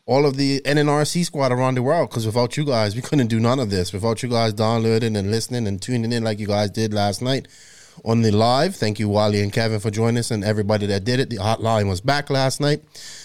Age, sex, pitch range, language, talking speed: 20-39, male, 105-130 Hz, English, 250 wpm